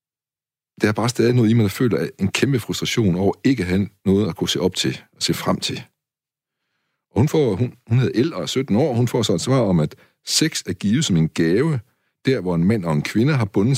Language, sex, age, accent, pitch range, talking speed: Danish, male, 60-79, native, 95-125 Hz, 250 wpm